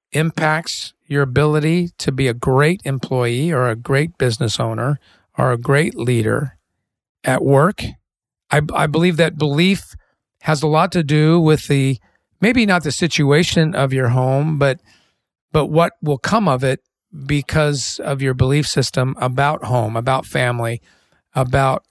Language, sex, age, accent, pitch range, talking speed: English, male, 40-59, American, 125-150 Hz, 150 wpm